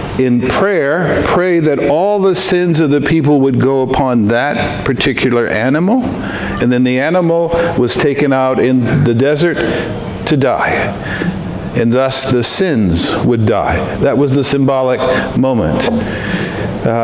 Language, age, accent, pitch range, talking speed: English, 60-79, American, 135-185 Hz, 140 wpm